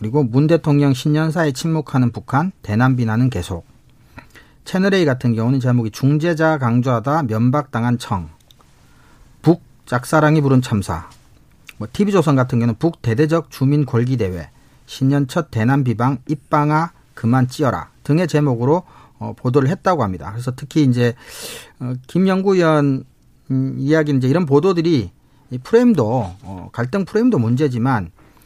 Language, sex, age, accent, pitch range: Korean, male, 40-59, native, 120-155 Hz